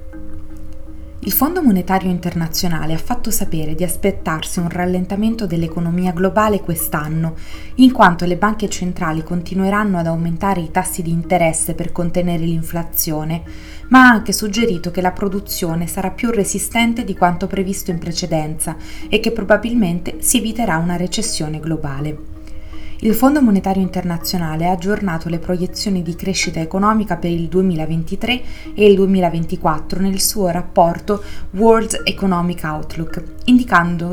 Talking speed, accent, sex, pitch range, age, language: 135 wpm, native, female, 170-205 Hz, 20-39, Italian